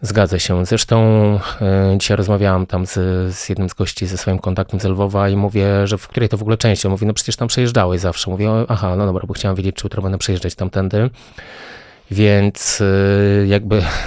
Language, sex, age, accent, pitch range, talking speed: Polish, male, 20-39, native, 95-105 Hz, 200 wpm